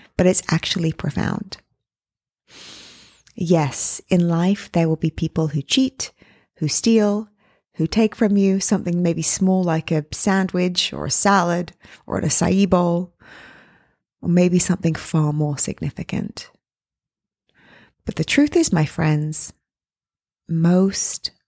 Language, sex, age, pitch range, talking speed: English, female, 30-49, 160-195 Hz, 125 wpm